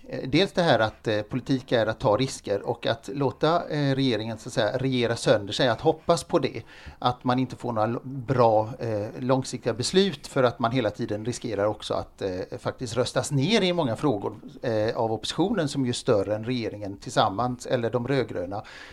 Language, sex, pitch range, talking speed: English, male, 120-160 Hz, 195 wpm